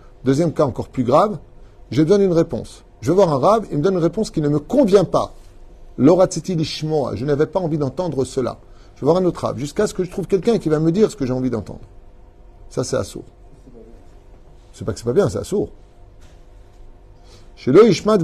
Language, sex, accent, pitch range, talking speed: French, male, French, 110-165 Hz, 200 wpm